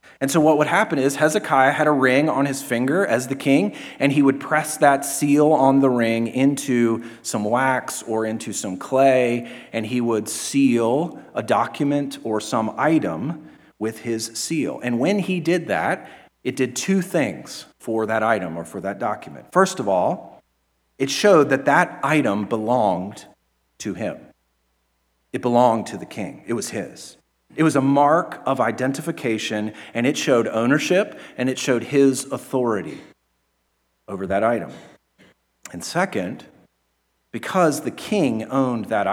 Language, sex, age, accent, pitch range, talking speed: English, male, 40-59, American, 105-140 Hz, 160 wpm